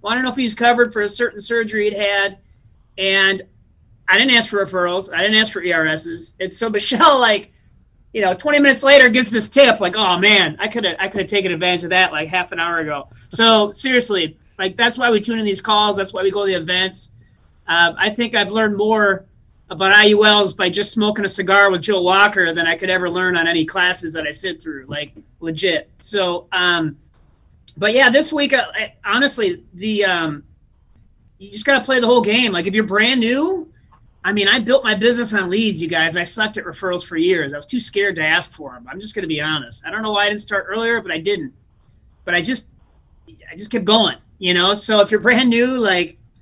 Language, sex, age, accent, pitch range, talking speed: English, male, 30-49, American, 170-225 Hz, 235 wpm